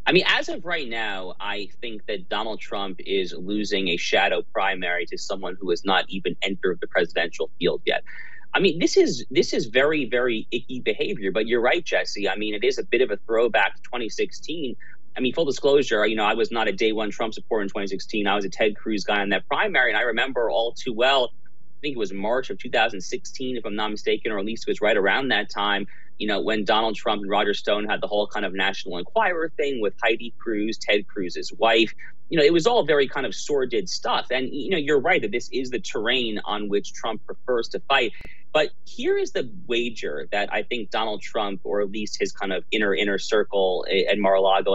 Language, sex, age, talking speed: English, male, 30-49, 230 wpm